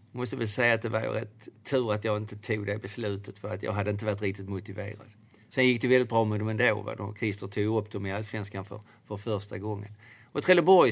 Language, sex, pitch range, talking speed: Swedish, male, 100-110 Hz, 240 wpm